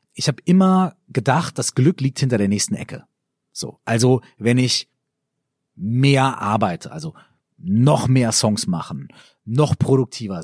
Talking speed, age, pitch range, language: 140 wpm, 40-59, 115-140 Hz, German